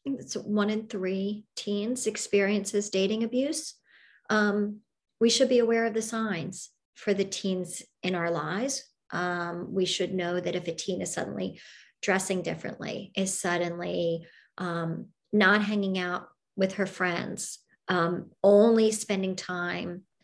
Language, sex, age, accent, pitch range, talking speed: English, male, 40-59, American, 185-220 Hz, 140 wpm